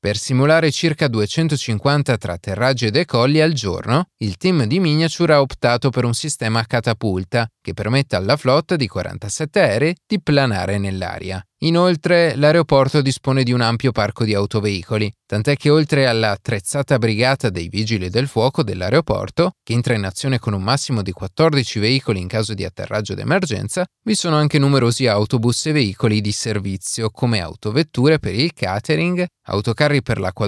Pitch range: 105-150 Hz